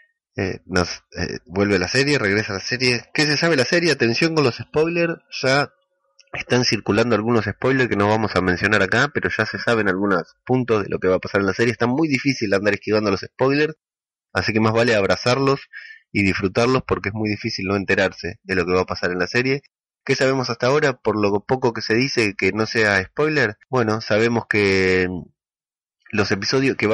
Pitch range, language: 100-130 Hz, Spanish